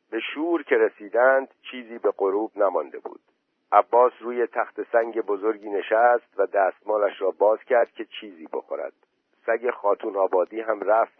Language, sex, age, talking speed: Persian, male, 50-69, 150 wpm